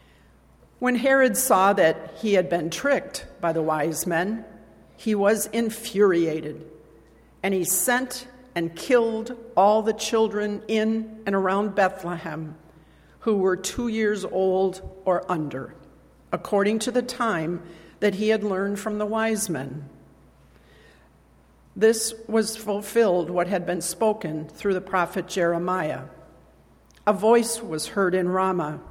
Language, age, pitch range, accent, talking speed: English, 50-69, 170-220 Hz, American, 130 wpm